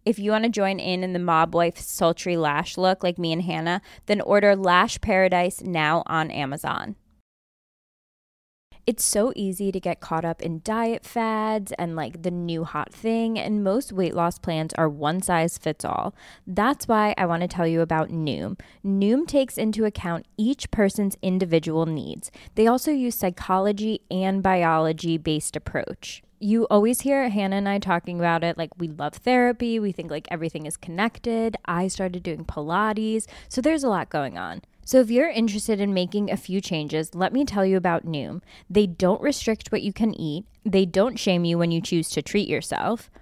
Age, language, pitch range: 20-39, English, 165-215 Hz